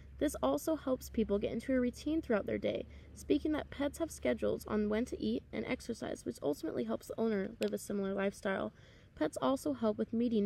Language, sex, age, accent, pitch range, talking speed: English, female, 20-39, American, 205-255 Hz, 205 wpm